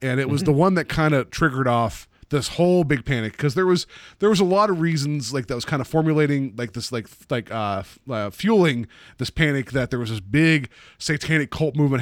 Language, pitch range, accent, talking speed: English, 115-150 Hz, American, 240 wpm